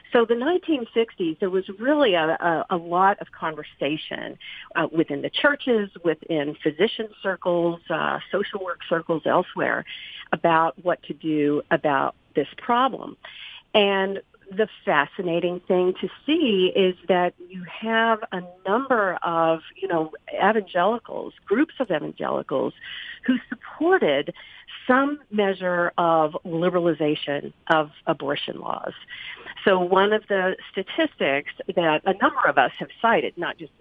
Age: 50-69